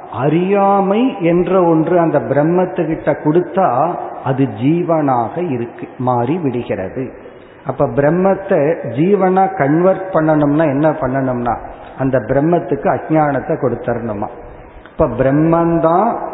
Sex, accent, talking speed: male, native, 90 wpm